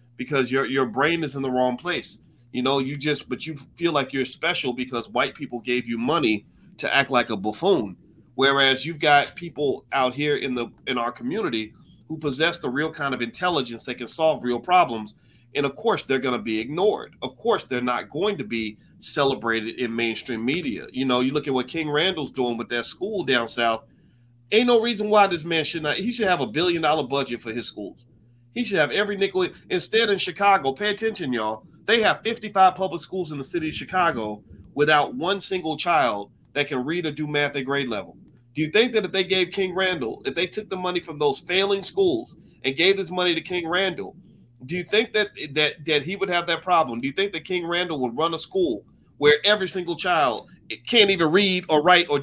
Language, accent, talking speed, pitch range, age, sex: English, American, 225 wpm, 125-180 Hz, 40-59, male